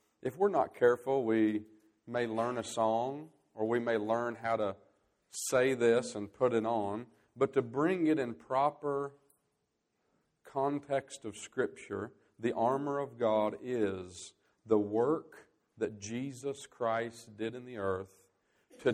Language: English